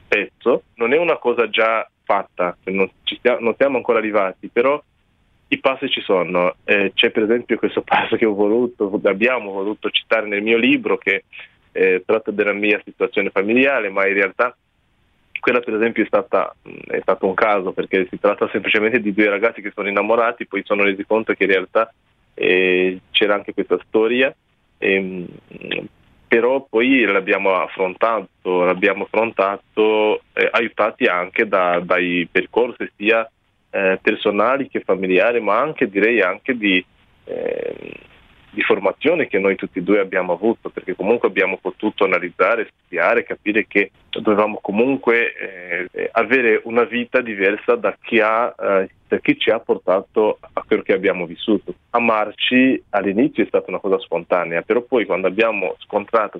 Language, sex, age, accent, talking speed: Italian, male, 20-39, native, 155 wpm